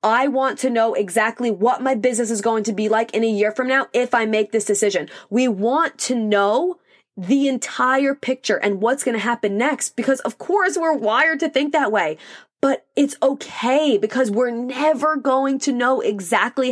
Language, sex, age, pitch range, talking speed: English, female, 20-39, 210-270 Hz, 195 wpm